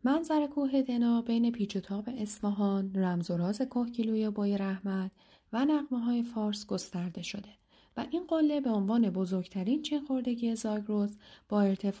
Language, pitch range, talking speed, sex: Persian, 190-245 Hz, 145 wpm, female